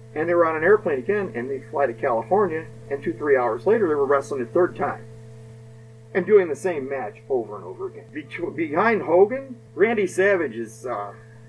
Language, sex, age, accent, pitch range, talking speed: English, male, 40-59, American, 115-170 Hz, 205 wpm